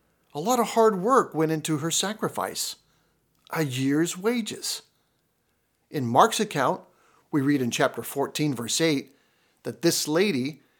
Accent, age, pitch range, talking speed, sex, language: American, 50-69, 130-180 Hz, 140 wpm, male, English